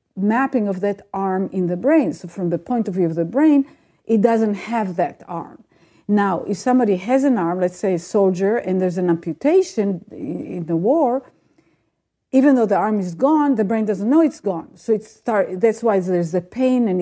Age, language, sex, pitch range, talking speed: 50-69, English, female, 180-245 Hz, 210 wpm